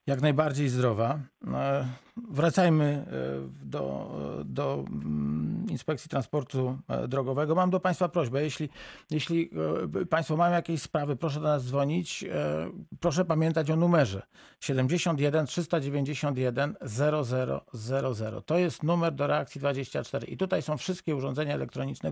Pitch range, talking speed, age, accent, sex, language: 130-160 Hz, 115 wpm, 50-69, native, male, Polish